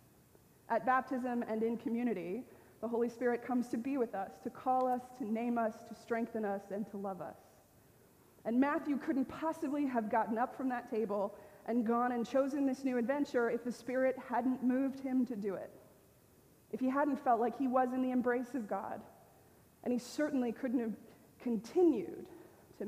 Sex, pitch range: female, 220-260 Hz